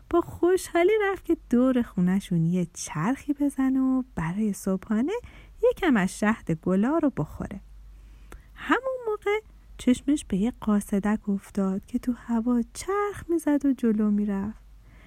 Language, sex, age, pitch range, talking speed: Persian, female, 30-49, 205-335 Hz, 130 wpm